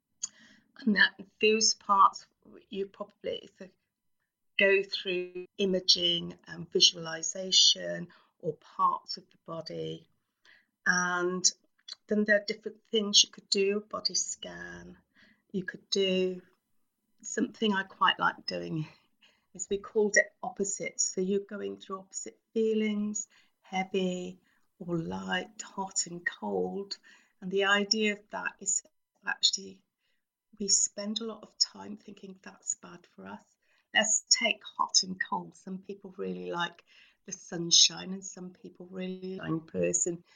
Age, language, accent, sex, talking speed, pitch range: 30-49, English, British, female, 130 wpm, 175-205 Hz